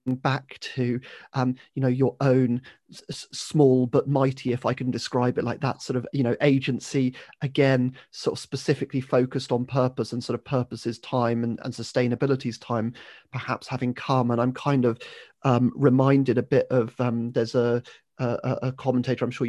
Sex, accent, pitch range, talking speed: male, British, 120-135 Hz, 180 wpm